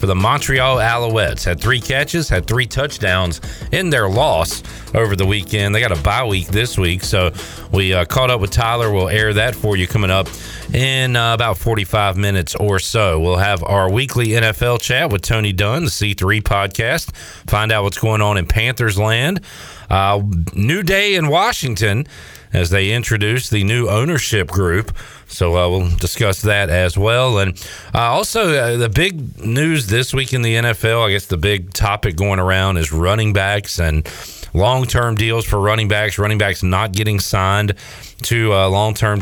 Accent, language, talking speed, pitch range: American, English, 180 wpm, 95-115 Hz